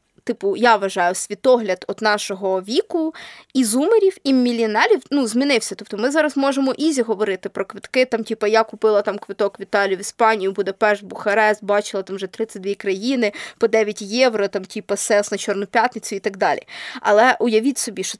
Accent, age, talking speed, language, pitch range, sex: native, 20-39, 180 wpm, Ukrainian, 210-275 Hz, female